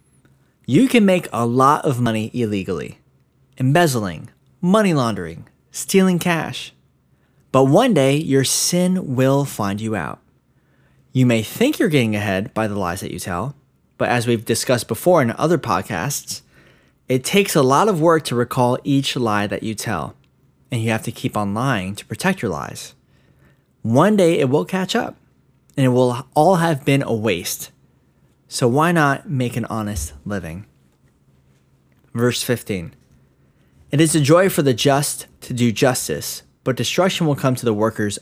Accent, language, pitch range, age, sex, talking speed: American, English, 110-150 Hz, 20-39, male, 165 wpm